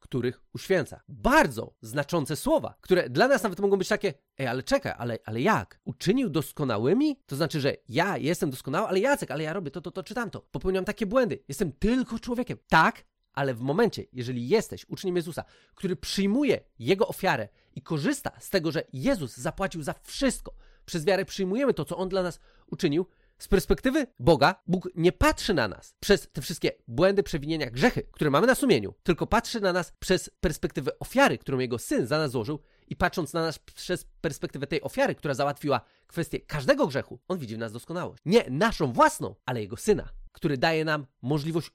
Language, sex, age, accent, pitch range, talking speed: Polish, male, 30-49, native, 145-205 Hz, 190 wpm